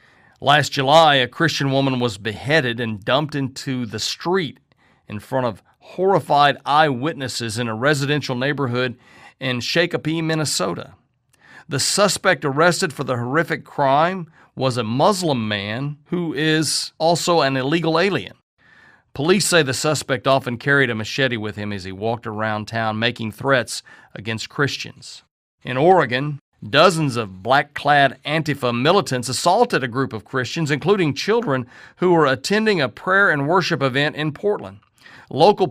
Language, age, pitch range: English, 40-59, 125-155 Hz